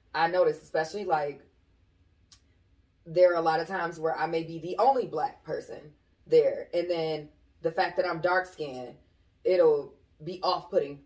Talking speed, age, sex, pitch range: 155 wpm, 20-39, female, 155-195 Hz